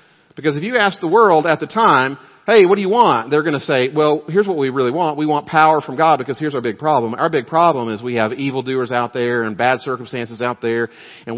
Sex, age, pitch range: male, 40-59, 130-170 Hz